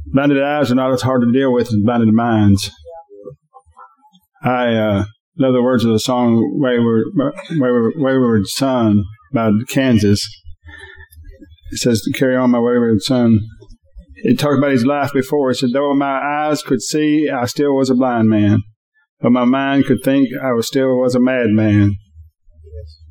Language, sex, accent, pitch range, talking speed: English, male, American, 110-135 Hz, 165 wpm